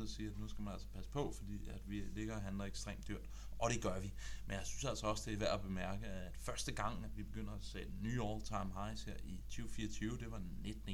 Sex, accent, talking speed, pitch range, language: male, native, 270 wpm, 95-110 Hz, Danish